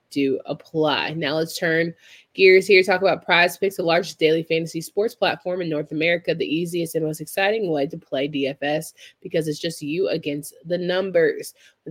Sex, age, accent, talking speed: female, 20-39, American, 185 wpm